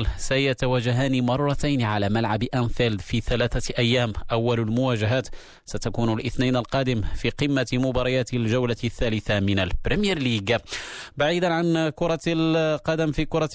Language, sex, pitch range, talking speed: Arabic, male, 110-135 Hz, 120 wpm